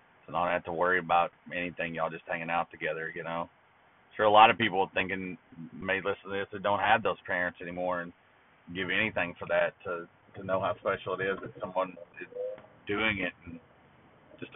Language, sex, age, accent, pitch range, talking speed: English, male, 40-59, American, 95-135 Hz, 210 wpm